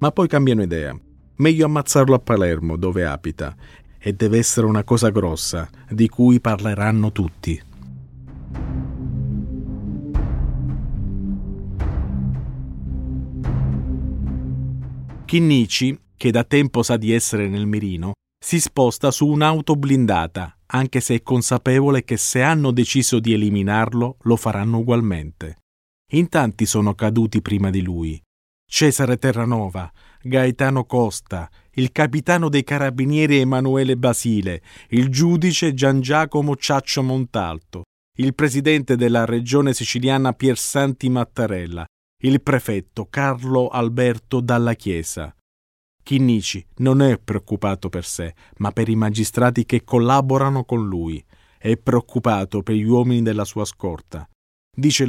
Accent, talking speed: native, 115 wpm